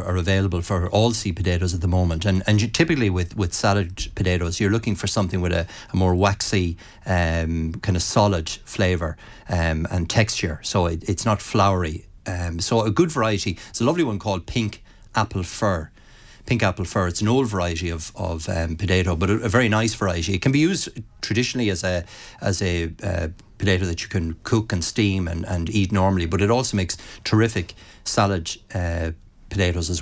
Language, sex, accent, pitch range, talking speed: English, male, Irish, 90-105 Hz, 200 wpm